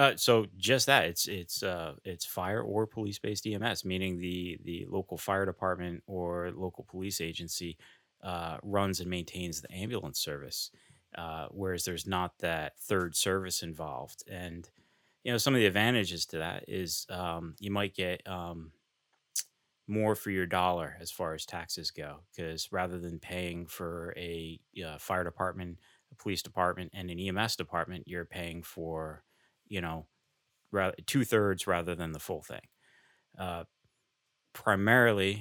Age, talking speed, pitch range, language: 30-49, 155 wpm, 85-100 Hz, English